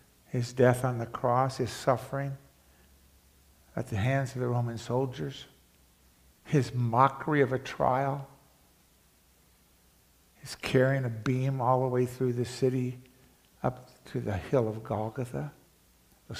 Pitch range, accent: 105-145 Hz, American